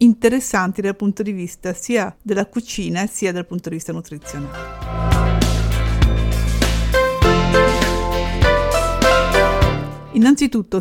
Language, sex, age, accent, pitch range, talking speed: Italian, female, 50-69, native, 170-210 Hz, 85 wpm